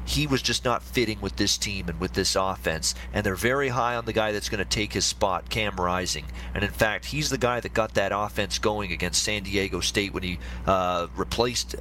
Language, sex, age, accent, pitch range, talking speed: English, male, 40-59, American, 95-115 Hz, 235 wpm